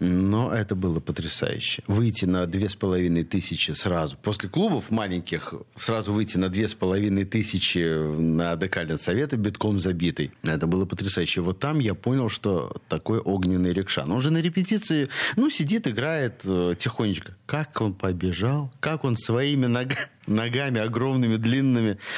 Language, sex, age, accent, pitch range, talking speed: Russian, male, 40-59, native, 95-125 Hz, 150 wpm